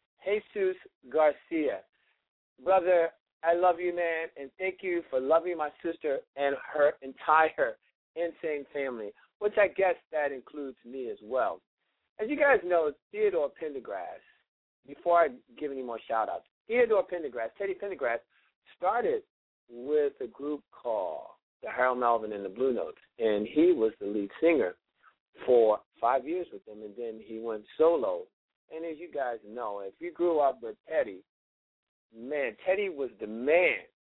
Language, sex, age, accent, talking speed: English, male, 50-69, American, 155 wpm